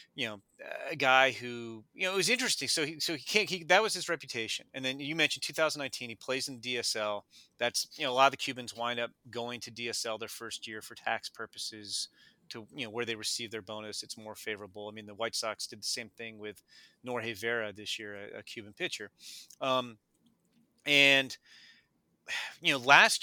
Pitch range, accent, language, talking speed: 115-150 Hz, American, English, 210 wpm